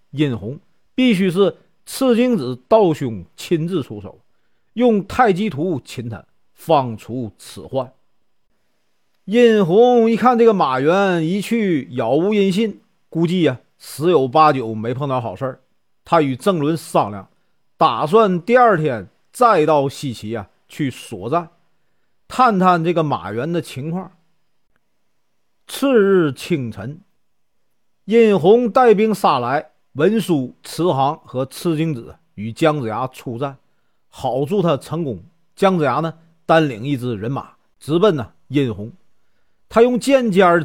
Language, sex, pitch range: Chinese, male, 135-200 Hz